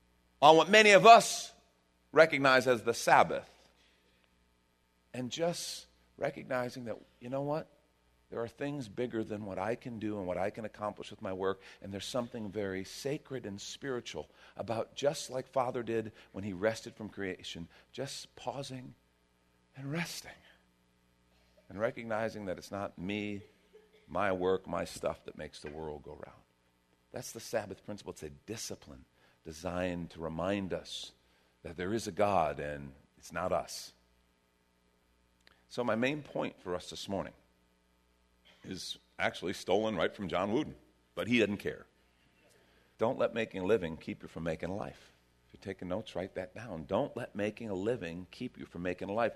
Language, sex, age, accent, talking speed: English, male, 50-69, American, 170 wpm